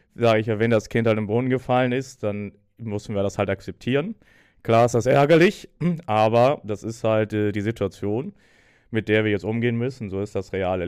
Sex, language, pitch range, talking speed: male, German, 105-120 Hz, 210 wpm